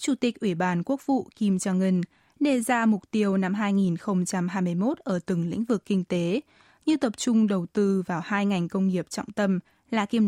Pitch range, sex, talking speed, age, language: 185-235 Hz, female, 205 wpm, 20-39, Vietnamese